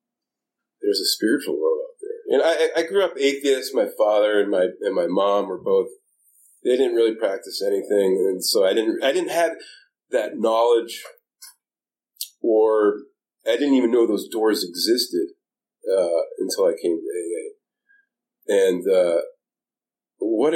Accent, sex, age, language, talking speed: American, male, 40-59, English, 150 wpm